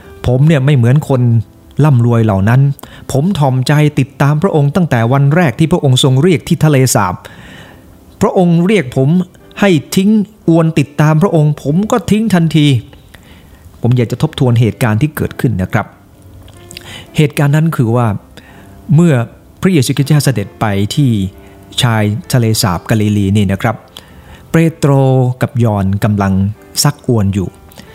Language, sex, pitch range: English, male, 105-150 Hz